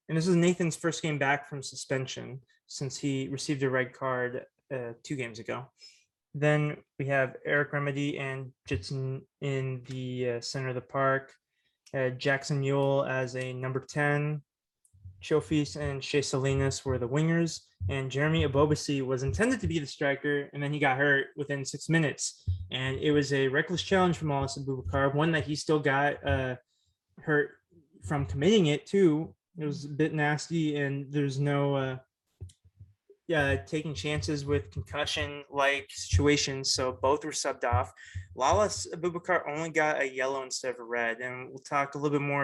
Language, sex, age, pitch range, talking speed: English, male, 20-39, 130-150 Hz, 170 wpm